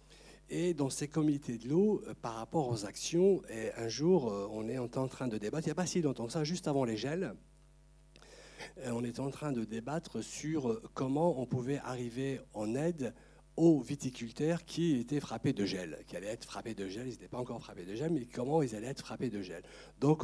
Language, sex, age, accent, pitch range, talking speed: French, male, 60-79, French, 120-165 Hz, 215 wpm